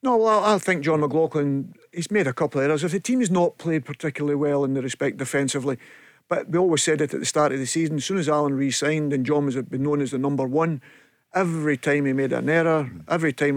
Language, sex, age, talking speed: English, male, 50-69, 255 wpm